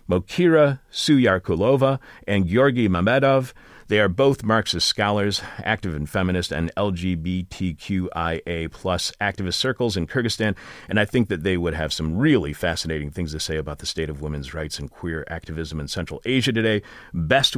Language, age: English, 40-59